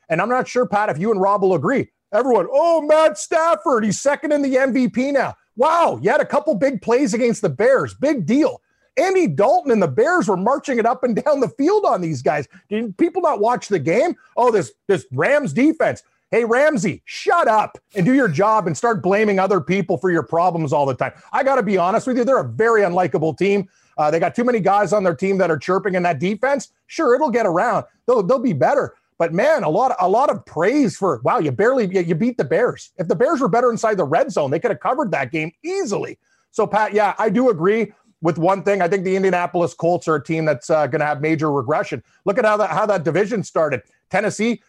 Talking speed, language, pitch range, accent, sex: 240 wpm, English, 180-250 Hz, American, male